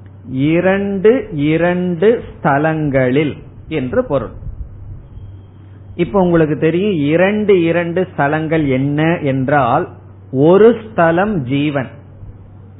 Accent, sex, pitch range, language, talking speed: native, male, 130-180 Hz, Tamil, 65 wpm